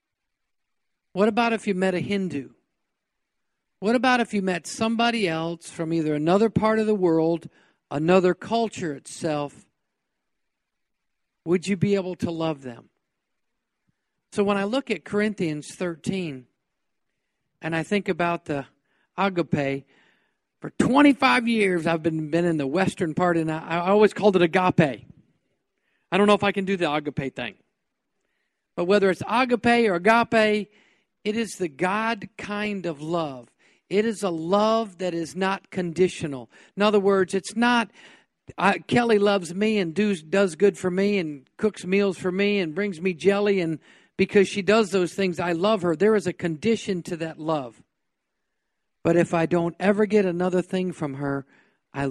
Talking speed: 165 wpm